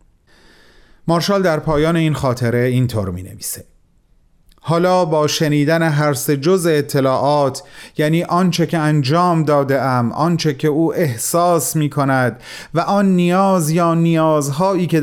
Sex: male